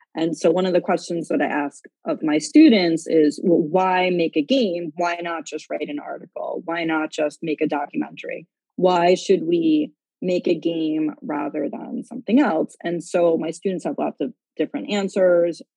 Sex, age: female, 30-49